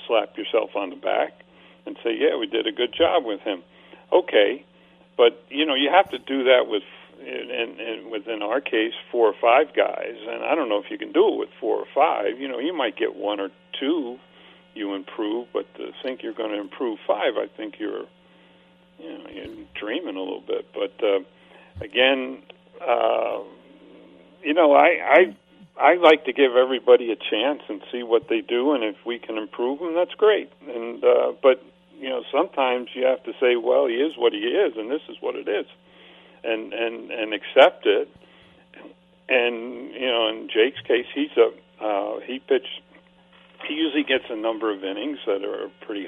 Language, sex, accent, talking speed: English, male, American, 195 wpm